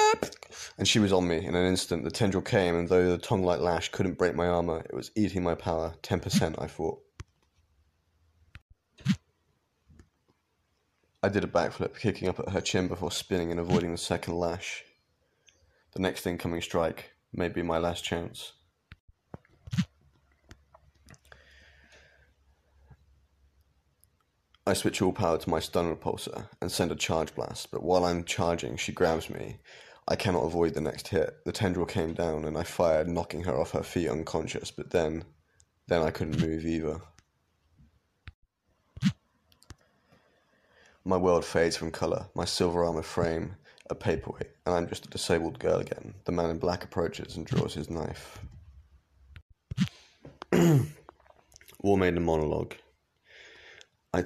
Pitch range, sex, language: 80-90 Hz, male, English